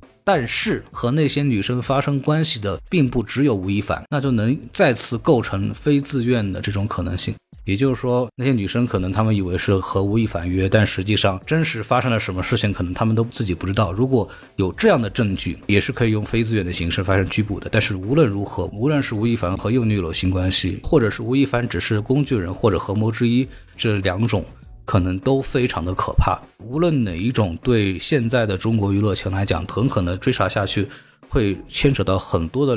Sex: male